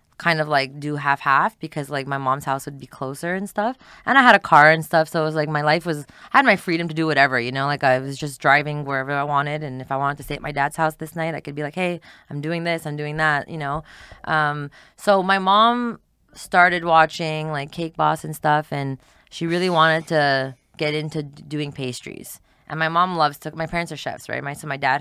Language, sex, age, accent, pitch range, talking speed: English, female, 20-39, American, 145-170 Hz, 255 wpm